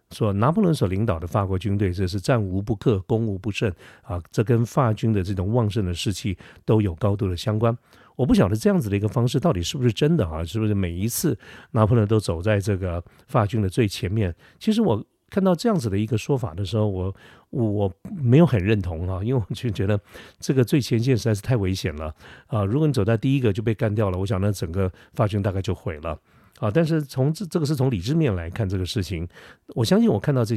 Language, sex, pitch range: Chinese, male, 95-125 Hz